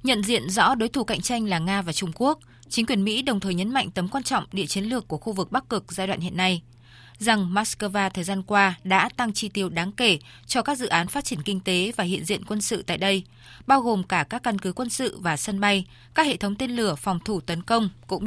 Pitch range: 180-235 Hz